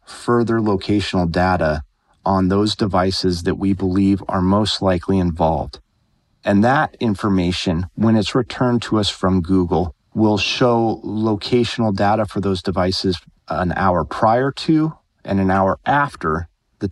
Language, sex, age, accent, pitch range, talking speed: English, male, 30-49, American, 90-110 Hz, 140 wpm